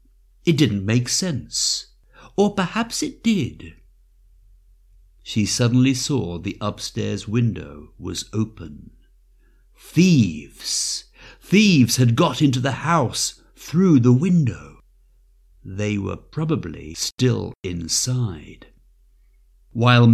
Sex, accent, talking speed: male, British, 95 wpm